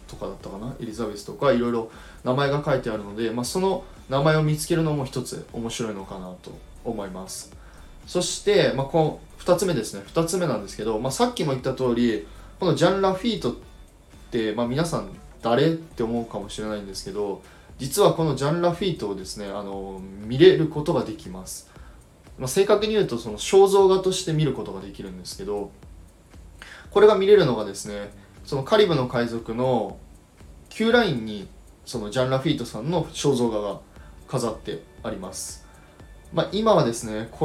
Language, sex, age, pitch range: Japanese, male, 20-39, 100-160 Hz